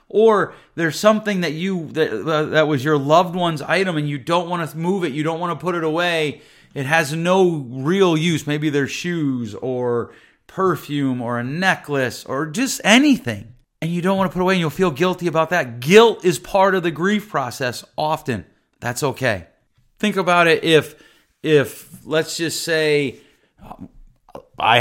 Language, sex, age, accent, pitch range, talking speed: English, male, 30-49, American, 125-165 Hz, 180 wpm